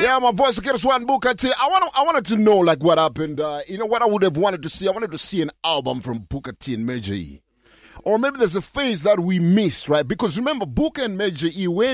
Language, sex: English, male